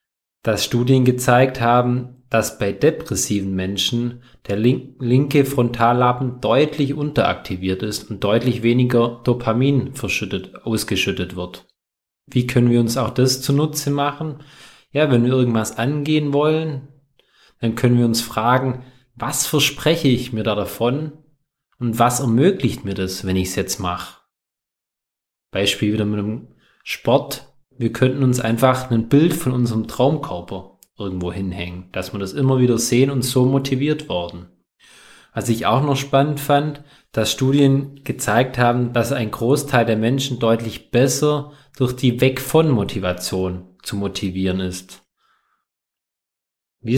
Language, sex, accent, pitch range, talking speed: German, male, German, 110-135 Hz, 135 wpm